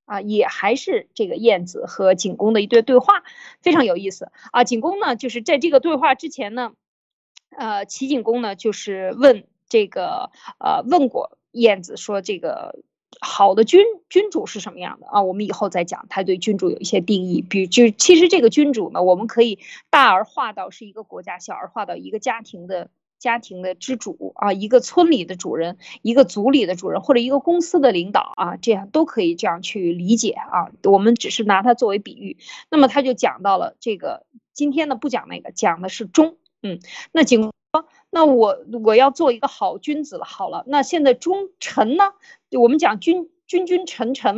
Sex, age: female, 20-39